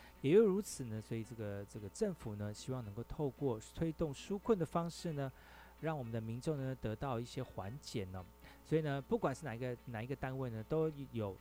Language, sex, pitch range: Chinese, male, 110-155 Hz